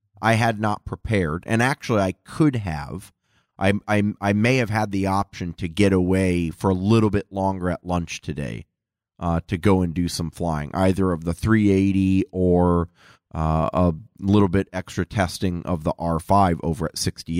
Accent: American